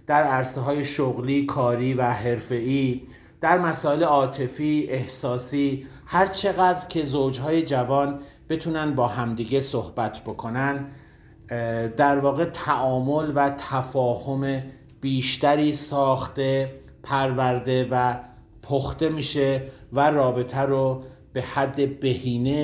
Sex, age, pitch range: male, 50-69, 125-145 Hz